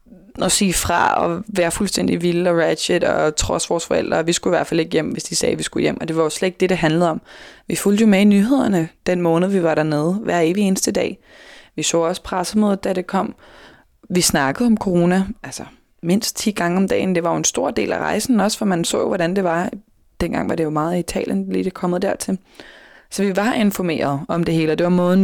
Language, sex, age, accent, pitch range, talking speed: Danish, female, 20-39, native, 170-195 Hz, 255 wpm